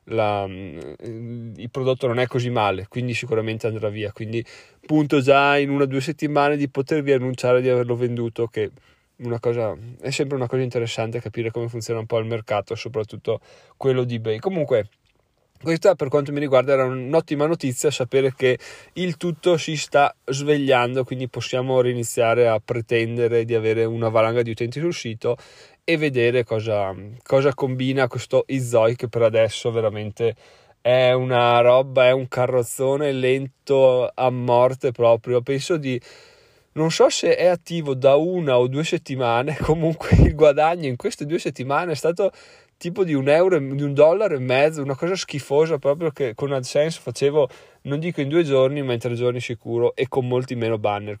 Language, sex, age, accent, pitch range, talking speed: Italian, male, 20-39, native, 115-145 Hz, 170 wpm